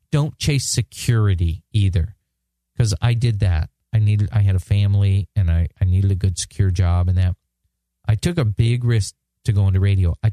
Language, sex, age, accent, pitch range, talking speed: English, male, 40-59, American, 95-120 Hz, 200 wpm